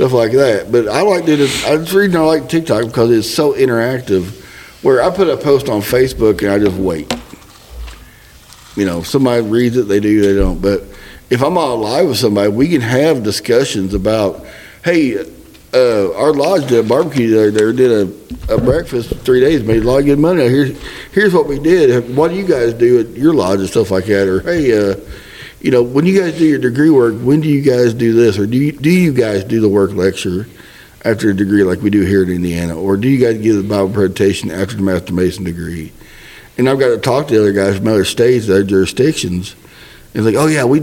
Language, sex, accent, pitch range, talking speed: English, male, American, 100-140 Hz, 230 wpm